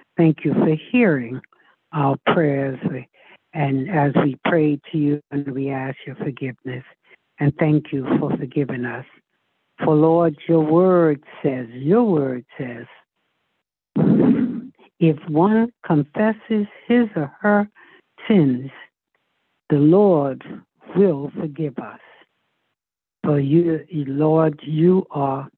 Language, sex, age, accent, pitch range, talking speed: English, female, 60-79, American, 140-180 Hz, 115 wpm